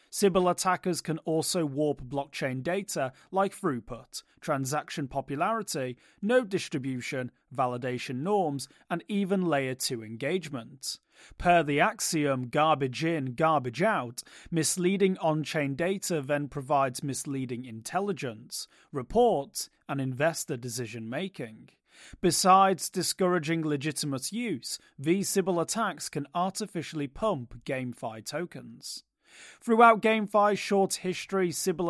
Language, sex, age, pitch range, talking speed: English, male, 30-49, 135-180 Hz, 105 wpm